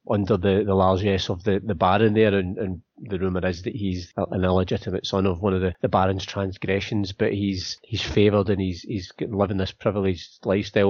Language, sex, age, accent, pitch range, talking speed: English, male, 30-49, British, 100-115 Hz, 210 wpm